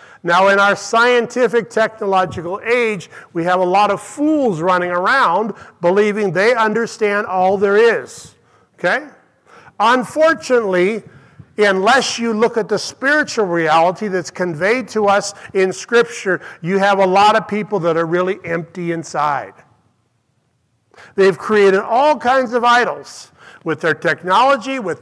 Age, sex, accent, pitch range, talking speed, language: 50-69, male, American, 175-230 Hz, 135 wpm, English